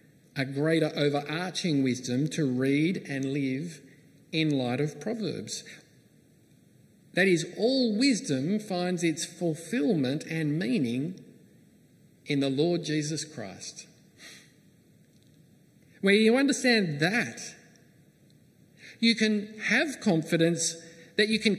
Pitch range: 145-185 Hz